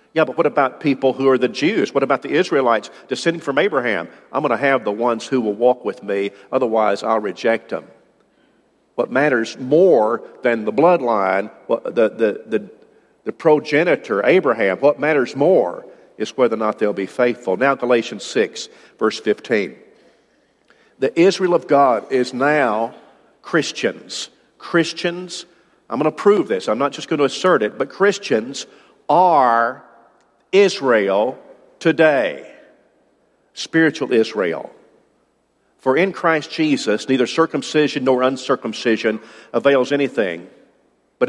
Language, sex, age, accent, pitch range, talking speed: English, male, 50-69, American, 115-150 Hz, 140 wpm